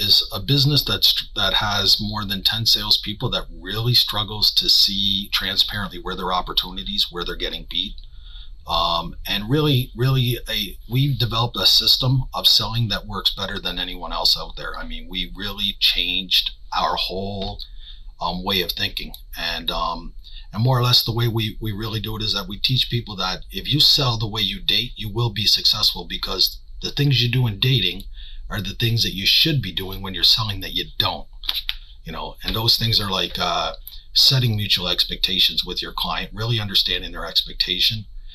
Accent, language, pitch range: American, English, 90-115 Hz